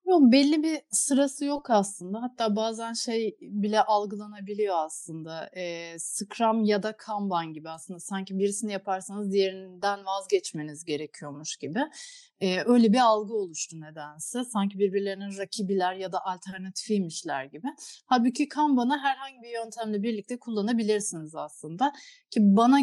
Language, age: Turkish, 30-49